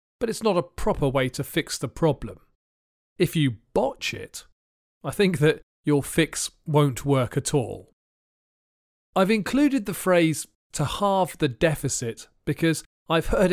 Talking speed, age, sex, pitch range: 150 wpm, 40-59, male, 130-170 Hz